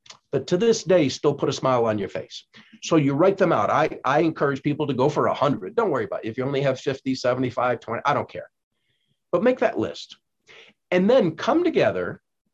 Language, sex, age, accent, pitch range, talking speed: English, male, 50-69, American, 130-170 Hz, 225 wpm